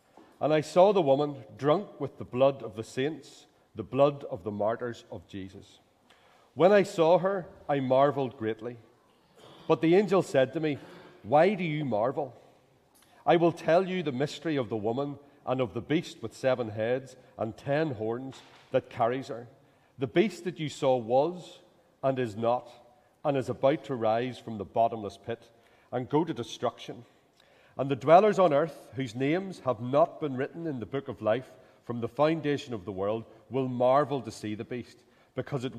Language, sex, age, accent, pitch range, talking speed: English, male, 40-59, Irish, 115-150 Hz, 185 wpm